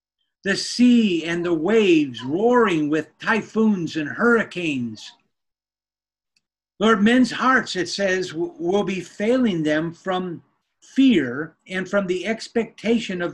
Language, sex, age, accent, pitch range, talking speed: English, male, 50-69, American, 165-220 Hz, 115 wpm